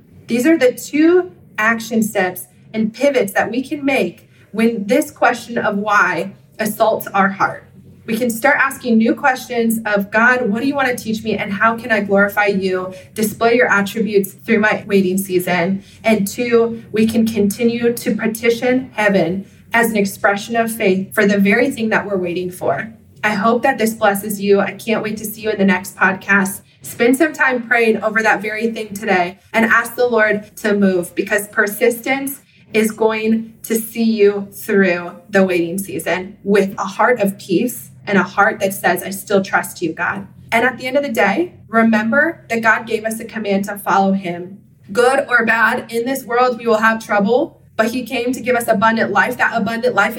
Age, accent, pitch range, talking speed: 20-39, American, 200-230 Hz, 195 wpm